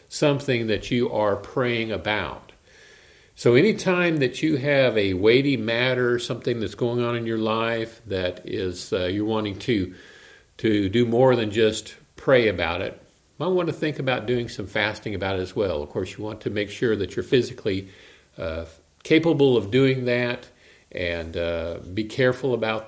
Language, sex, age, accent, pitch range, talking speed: English, male, 50-69, American, 100-125 Hz, 180 wpm